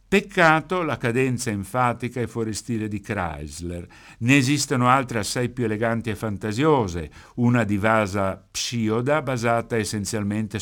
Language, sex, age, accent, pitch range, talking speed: Italian, male, 60-79, native, 95-125 Hz, 125 wpm